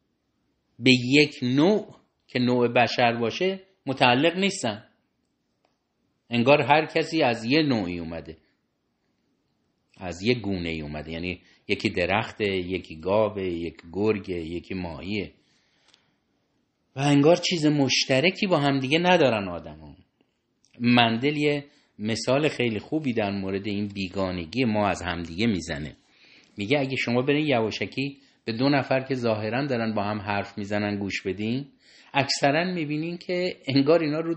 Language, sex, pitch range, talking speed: Persian, male, 100-155 Hz, 130 wpm